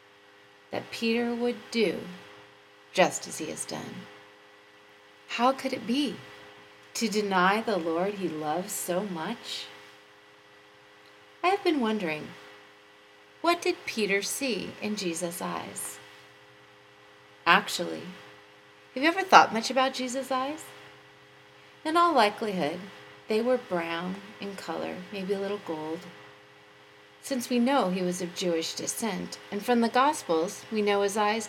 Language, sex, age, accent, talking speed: English, female, 40-59, American, 130 wpm